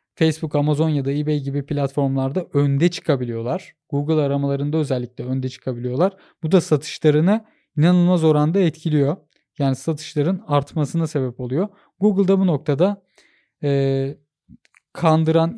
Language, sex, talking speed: Turkish, male, 115 wpm